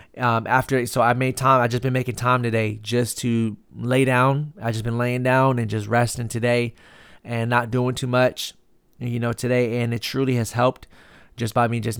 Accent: American